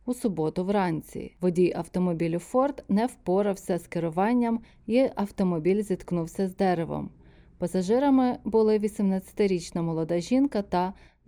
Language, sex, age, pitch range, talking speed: Ukrainian, female, 20-39, 180-230 Hz, 110 wpm